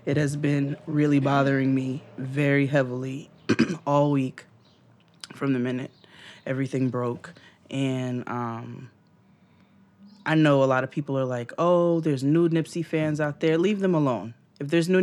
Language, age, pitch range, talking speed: English, 20-39, 130-155 Hz, 150 wpm